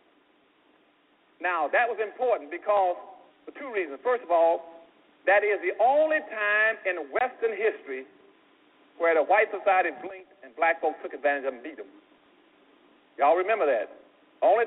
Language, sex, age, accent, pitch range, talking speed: English, male, 50-69, American, 155-250 Hz, 155 wpm